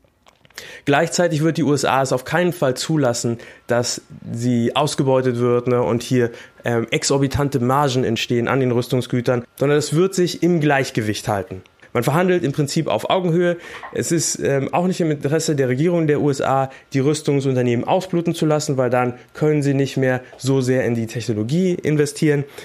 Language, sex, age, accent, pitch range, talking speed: German, male, 20-39, German, 120-155 Hz, 165 wpm